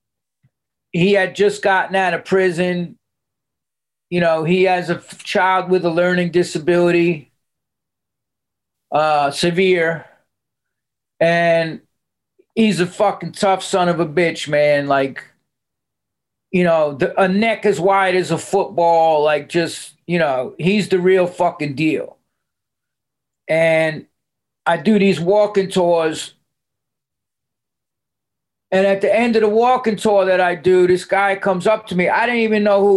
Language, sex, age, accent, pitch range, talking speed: English, male, 40-59, American, 165-200 Hz, 140 wpm